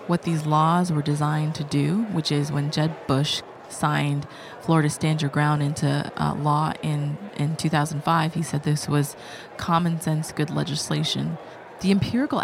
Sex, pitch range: female, 150-175 Hz